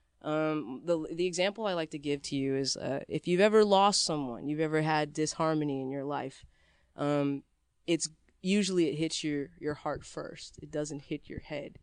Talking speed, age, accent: 195 wpm, 20-39, American